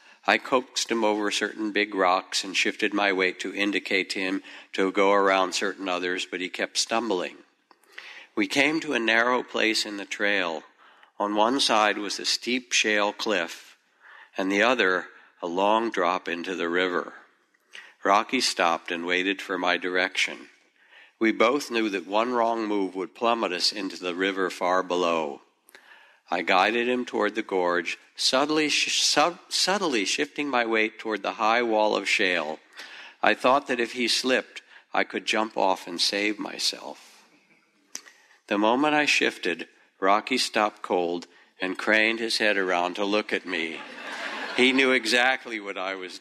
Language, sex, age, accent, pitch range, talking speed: English, male, 60-79, American, 95-120 Hz, 160 wpm